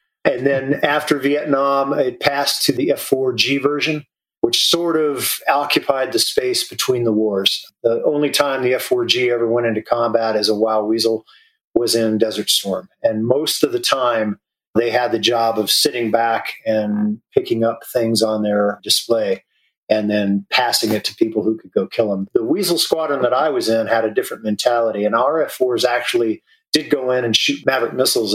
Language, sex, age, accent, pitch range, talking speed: English, male, 40-59, American, 105-140 Hz, 195 wpm